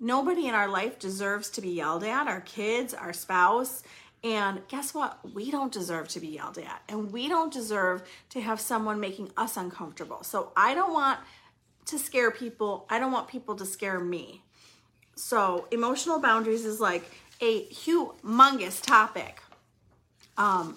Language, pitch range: English, 200-270 Hz